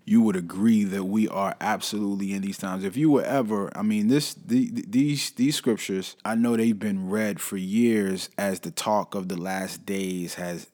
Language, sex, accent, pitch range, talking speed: English, male, American, 95-125 Hz, 205 wpm